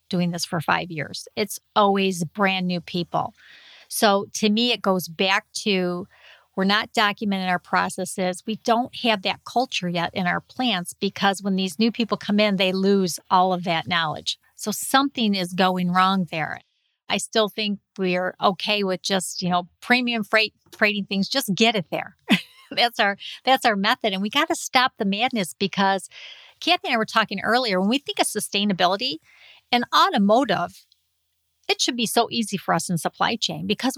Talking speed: 185 wpm